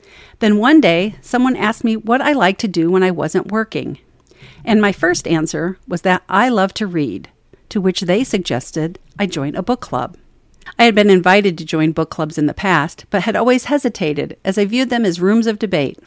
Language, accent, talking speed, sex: English, American, 215 wpm, female